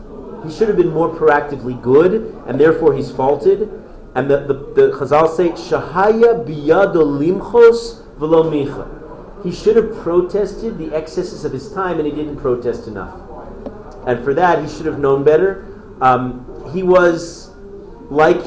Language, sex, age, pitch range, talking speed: English, male, 40-59, 140-195 Hz, 145 wpm